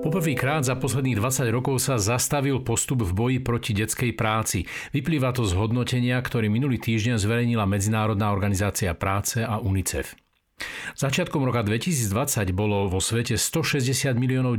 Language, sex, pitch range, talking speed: Slovak, male, 100-130 Hz, 145 wpm